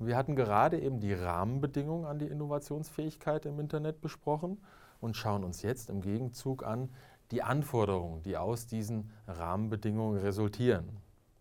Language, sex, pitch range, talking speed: English, male, 105-135 Hz, 135 wpm